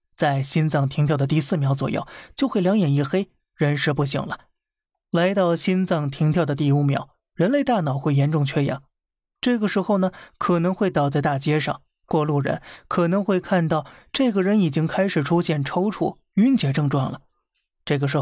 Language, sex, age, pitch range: Chinese, male, 20-39, 145-180 Hz